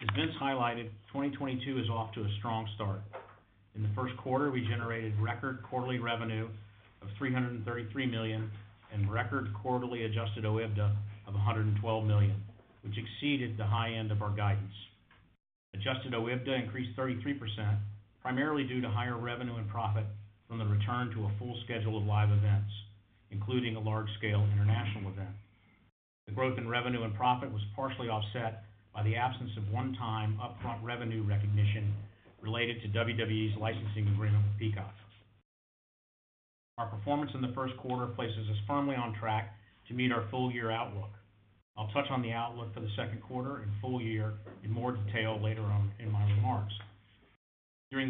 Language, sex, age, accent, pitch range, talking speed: English, male, 50-69, American, 105-125 Hz, 160 wpm